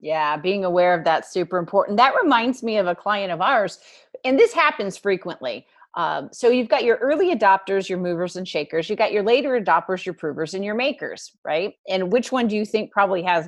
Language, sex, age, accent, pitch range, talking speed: English, female, 30-49, American, 180-260 Hz, 220 wpm